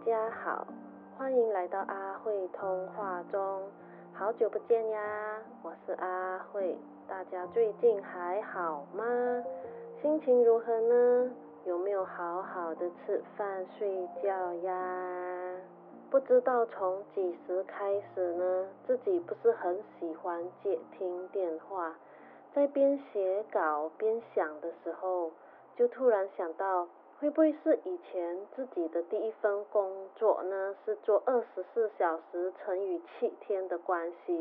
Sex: female